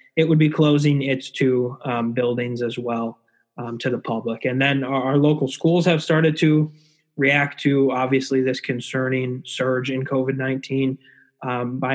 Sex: male